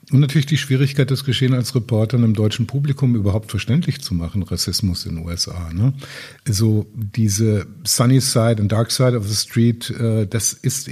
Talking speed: 180 wpm